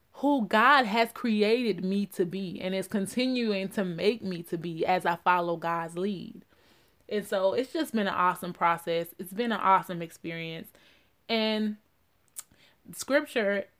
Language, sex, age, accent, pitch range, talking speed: English, female, 20-39, American, 175-215 Hz, 150 wpm